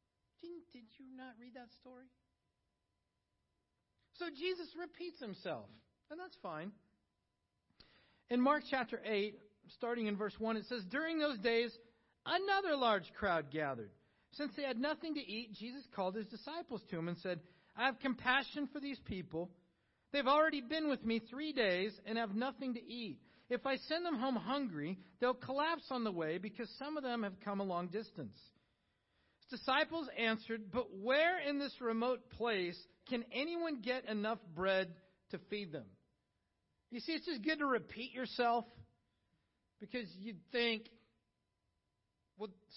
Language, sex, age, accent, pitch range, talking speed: English, male, 50-69, American, 215-295 Hz, 155 wpm